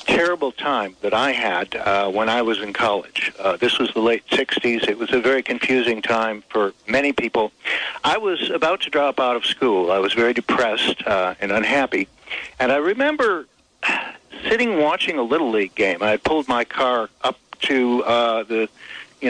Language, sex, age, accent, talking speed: English, male, 60-79, American, 185 wpm